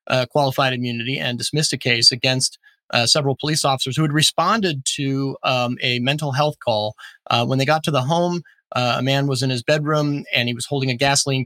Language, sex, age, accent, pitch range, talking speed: English, male, 30-49, American, 120-150 Hz, 215 wpm